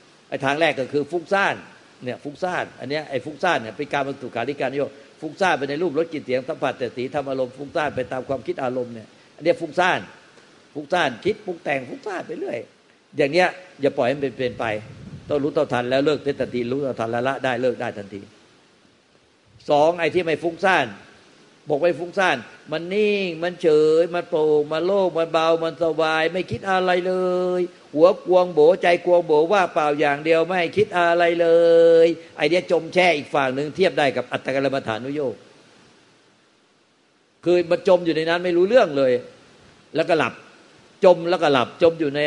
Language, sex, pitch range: Thai, male, 135-175 Hz